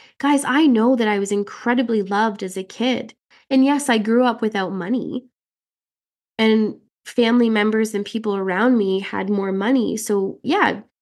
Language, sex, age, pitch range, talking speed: English, female, 20-39, 210-250 Hz, 165 wpm